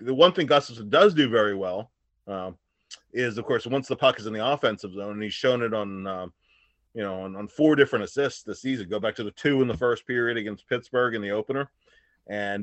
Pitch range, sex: 105-135 Hz, male